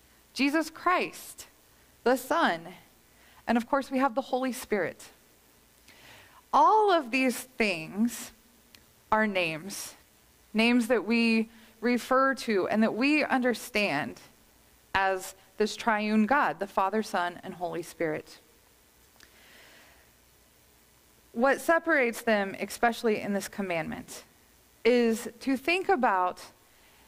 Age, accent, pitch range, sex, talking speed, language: 20-39, American, 195-260 Hz, female, 105 wpm, English